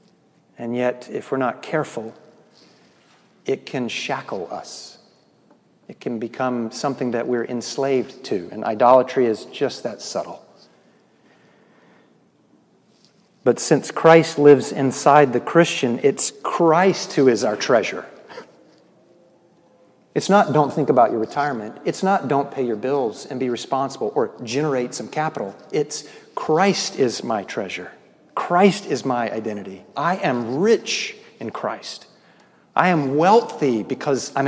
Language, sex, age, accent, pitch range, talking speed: English, male, 40-59, American, 125-165 Hz, 130 wpm